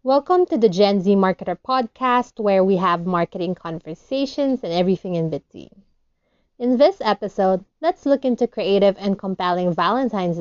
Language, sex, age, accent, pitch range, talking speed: English, female, 20-39, Filipino, 185-250 Hz, 150 wpm